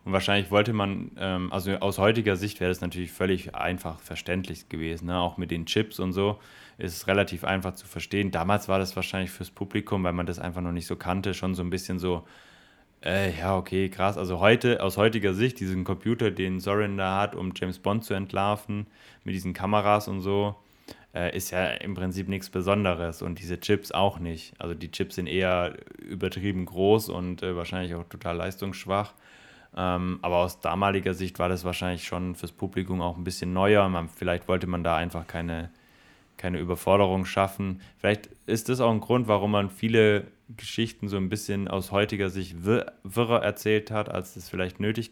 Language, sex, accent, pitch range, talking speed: German, male, German, 90-100 Hz, 195 wpm